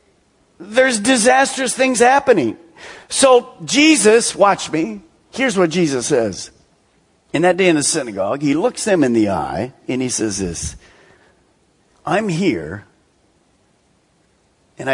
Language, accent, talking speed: English, American, 125 wpm